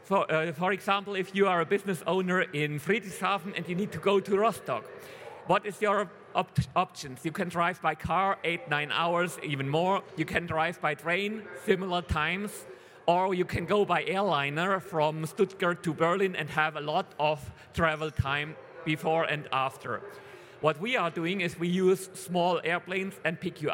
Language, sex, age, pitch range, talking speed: German, male, 40-59, 150-190 Hz, 185 wpm